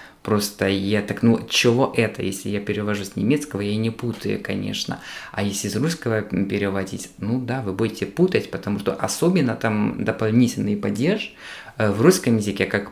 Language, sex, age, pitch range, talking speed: Ukrainian, male, 20-39, 100-115 Hz, 165 wpm